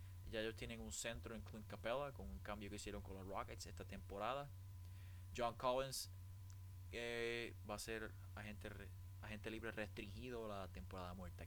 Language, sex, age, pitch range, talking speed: Spanish, male, 20-39, 95-120 Hz, 165 wpm